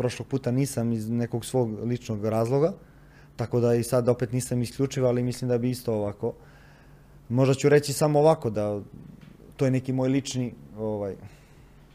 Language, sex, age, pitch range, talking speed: Croatian, male, 20-39, 120-145 Hz, 165 wpm